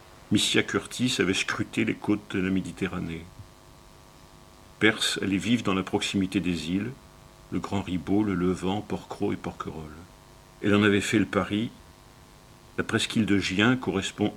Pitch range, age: 90-110 Hz, 70-89